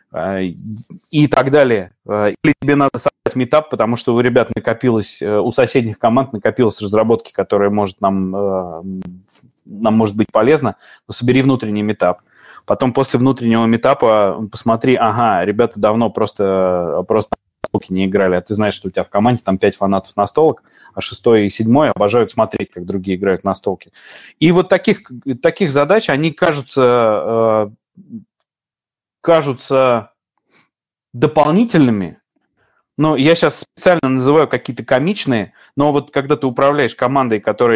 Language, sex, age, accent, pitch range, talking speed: Russian, male, 20-39, native, 105-135 Hz, 145 wpm